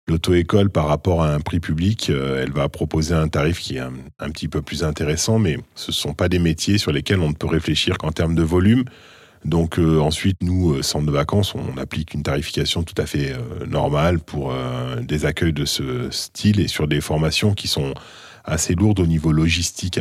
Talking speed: 215 wpm